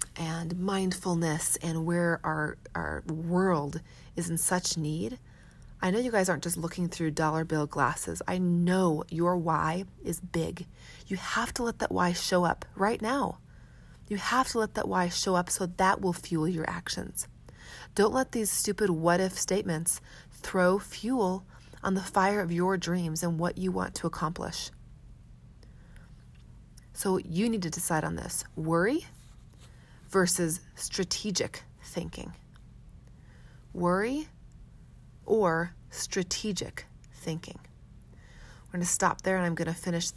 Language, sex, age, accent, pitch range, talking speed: English, female, 30-49, American, 165-190 Hz, 145 wpm